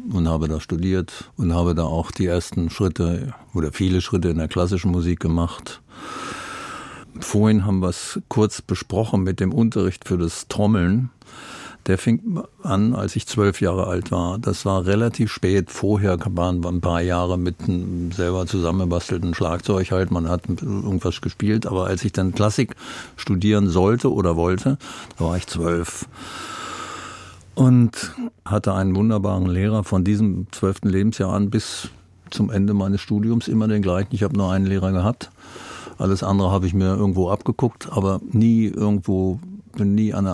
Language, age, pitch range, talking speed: German, 50-69, 90-110 Hz, 160 wpm